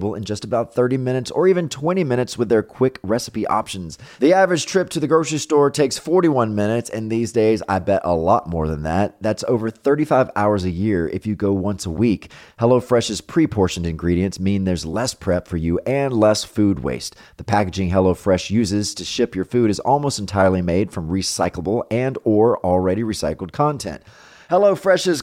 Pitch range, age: 95-125 Hz, 30-49